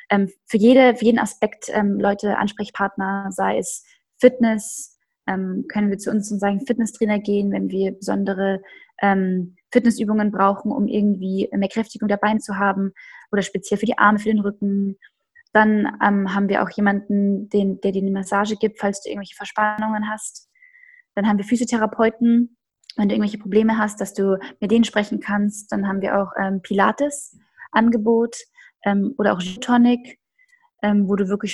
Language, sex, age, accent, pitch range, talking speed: German, female, 20-39, German, 200-230 Hz, 160 wpm